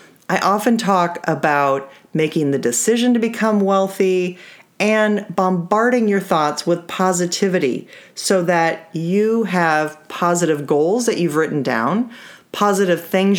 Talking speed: 125 wpm